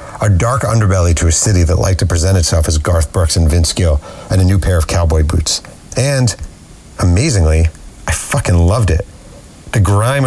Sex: male